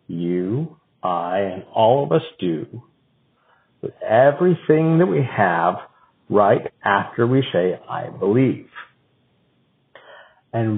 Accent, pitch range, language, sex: American, 120-155 Hz, English, male